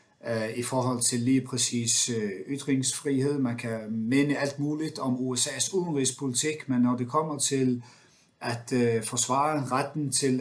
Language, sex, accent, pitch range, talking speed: Danish, male, native, 115-140 Hz, 135 wpm